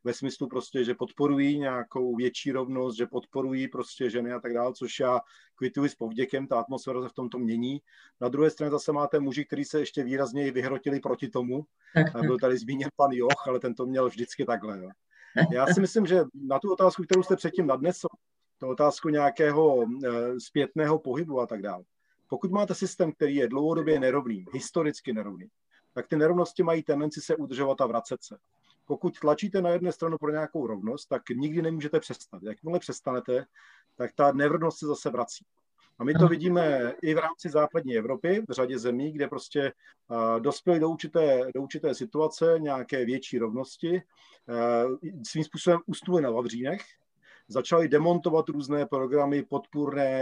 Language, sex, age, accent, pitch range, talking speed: Czech, male, 40-59, native, 125-160 Hz, 170 wpm